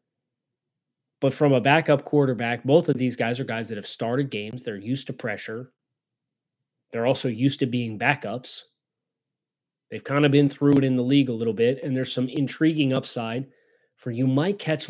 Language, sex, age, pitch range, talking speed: English, male, 20-39, 120-140 Hz, 185 wpm